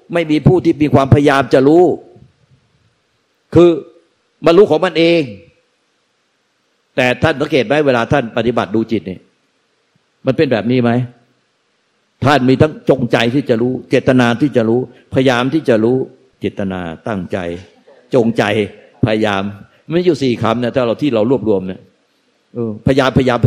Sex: male